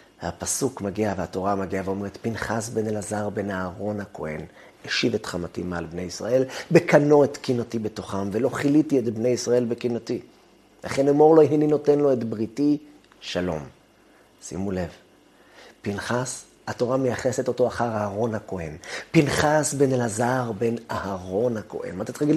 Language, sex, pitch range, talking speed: Hebrew, male, 95-150 Hz, 145 wpm